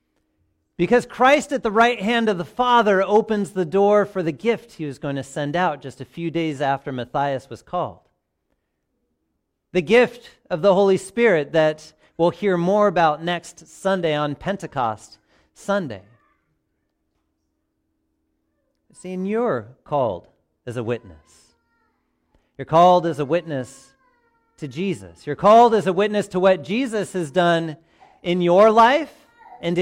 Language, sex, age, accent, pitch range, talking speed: English, male, 40-59, American, 140-215 Hz, 145 wpm